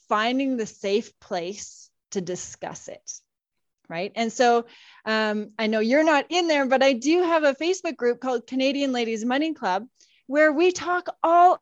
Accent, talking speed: American, 170 wpm